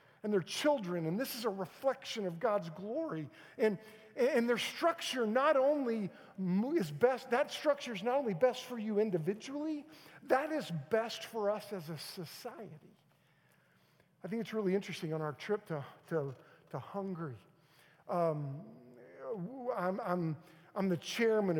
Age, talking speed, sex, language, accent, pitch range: 50-69, 150 wpm, male, English, American, 165-235 Hz